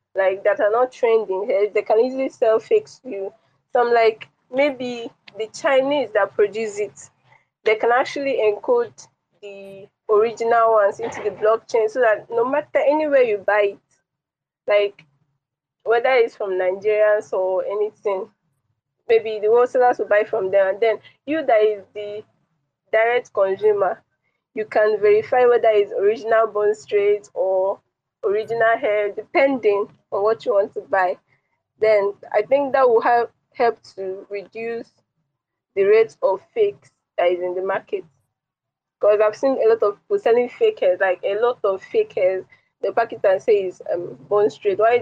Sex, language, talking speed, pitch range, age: female, English, 160 wpm, 195-255 Hz, 20-39